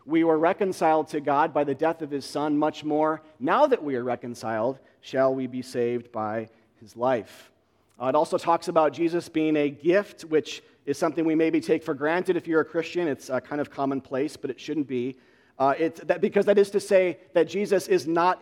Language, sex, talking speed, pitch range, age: English, male, 210 wpm, 145-180 Hz, 40-59